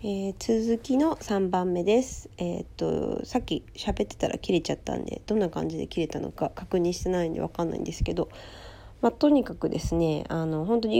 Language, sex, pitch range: Japanese, female, 145-225 Hz